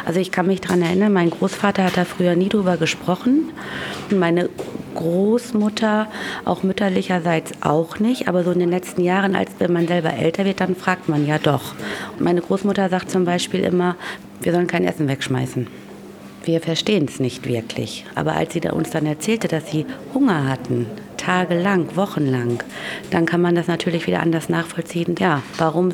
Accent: German